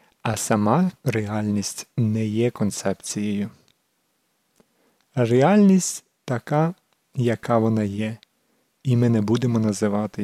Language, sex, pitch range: Ukrainian, male, 110-150 Hz